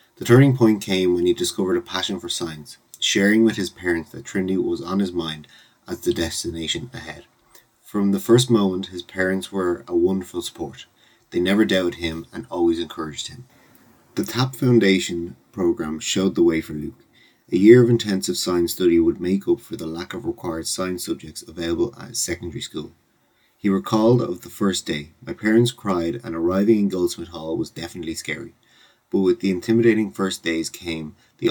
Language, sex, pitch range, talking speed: English, male, 85-110 Hz, 185 wpm